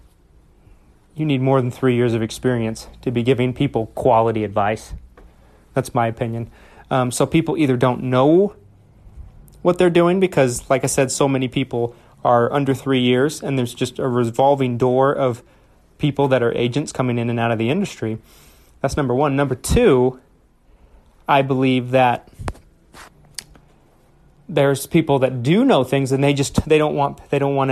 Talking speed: 170 wpm